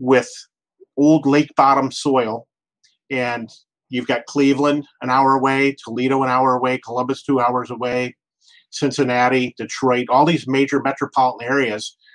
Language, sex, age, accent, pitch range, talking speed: English, male, 40-59, American, 120-135 Hz, 135 wpm